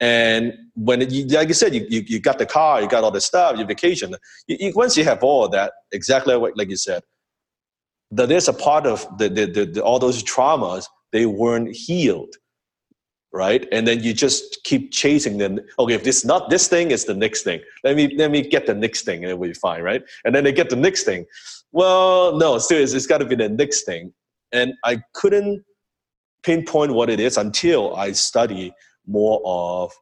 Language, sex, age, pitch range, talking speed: English, male, 30-49, 105-175 Hz, 210 wpm